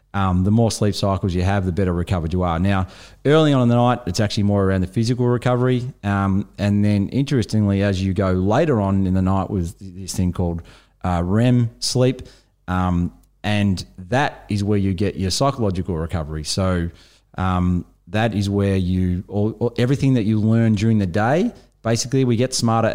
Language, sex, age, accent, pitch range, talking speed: English, male, 30-49, Australian, 90-115 Hz, 185 wpm